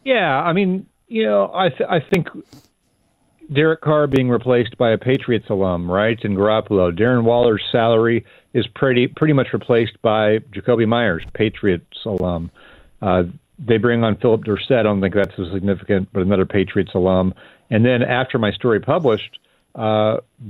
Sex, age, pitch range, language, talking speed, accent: male, 40-59, 95-115 Hz, English, 165 wpm, American